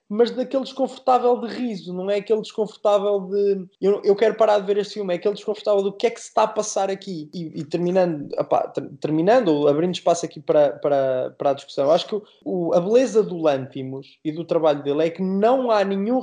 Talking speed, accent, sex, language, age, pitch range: 230 wpm, Brazilian, male, Portuguese, 20-39, 170-220 Hz